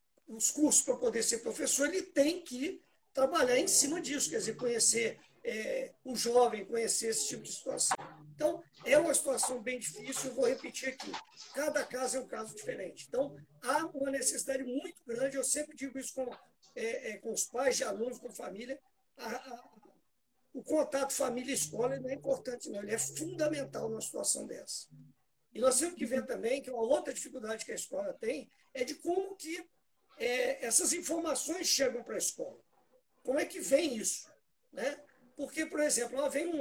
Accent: Brazilian